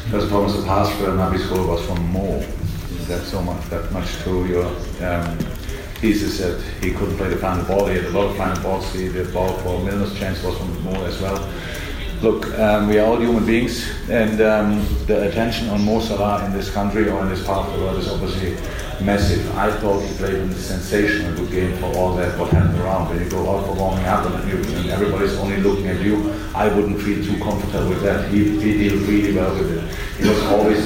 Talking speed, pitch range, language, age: 230 wpm, 90-105 Hz, English, 40-59